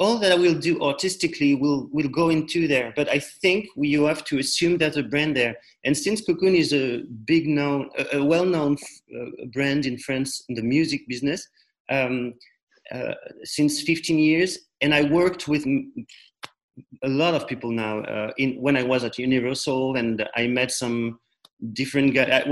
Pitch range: 125-160 Hz